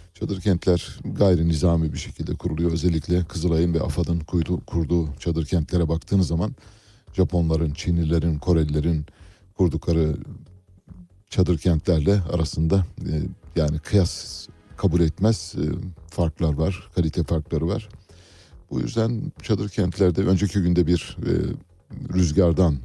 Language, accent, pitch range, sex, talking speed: Turkish, native, 80-100 Hz, male, 115 wpm